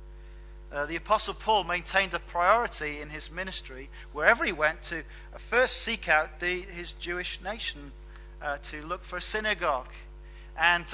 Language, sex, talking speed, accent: English, male, 155 wpm, British